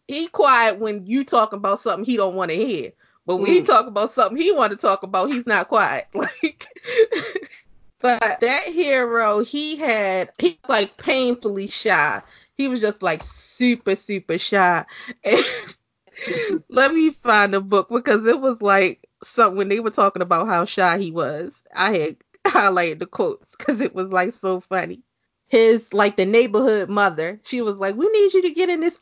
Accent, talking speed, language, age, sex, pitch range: American, 180 wpm, English, 30-49, female, 210-345 Hz